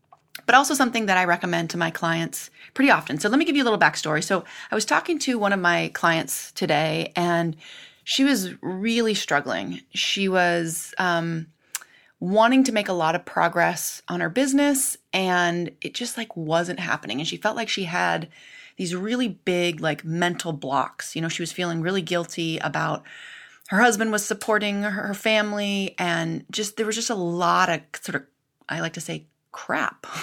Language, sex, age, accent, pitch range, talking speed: English, female, 30-49, American, 165-220 Hz, 190 wpm